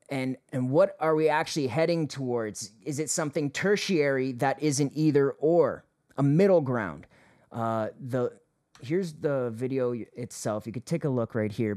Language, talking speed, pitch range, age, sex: English, 165 wpm, 130-160 Hz, 30-49, male